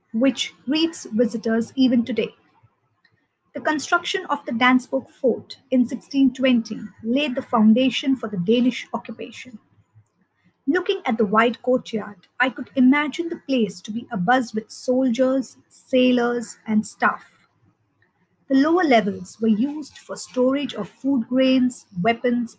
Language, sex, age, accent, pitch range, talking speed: English, female, 50-69, Indian, 220-270 Hz, 130 wpm